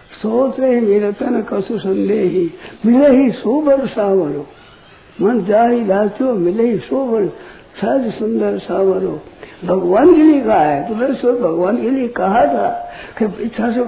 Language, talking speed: Hindi, 80 wpm